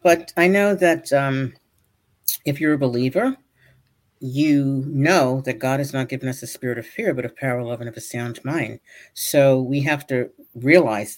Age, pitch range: 50-69, 120-155 Hz